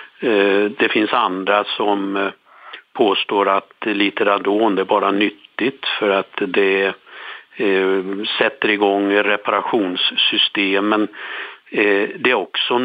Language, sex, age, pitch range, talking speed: Swedish, male, 50-69, 95-100 Hz, 90 wpm